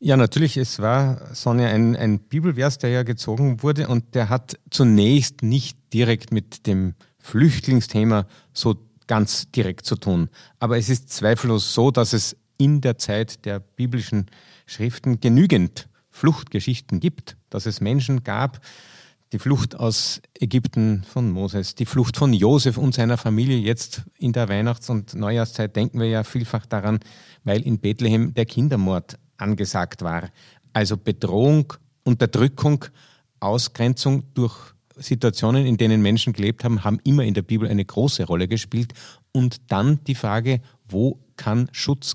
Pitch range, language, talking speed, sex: 110-130 Hz, German, 150 wpm, male